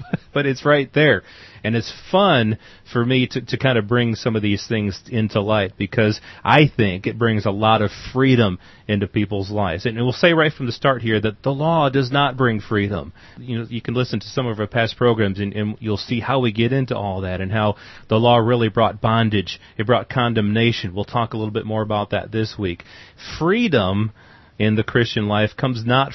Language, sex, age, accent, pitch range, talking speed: English, male, 30-49, American, 105-125 Hz, 215 wpm